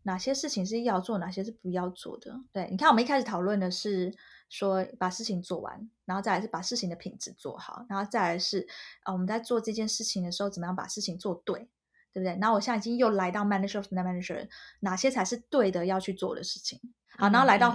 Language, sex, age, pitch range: Chinese, female, 20-39, 190-240 Hz